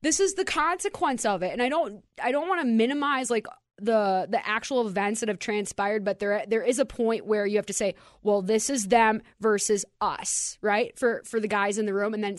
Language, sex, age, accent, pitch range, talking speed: English, female, 20-39, American, 200-245 Hz, 235 wpm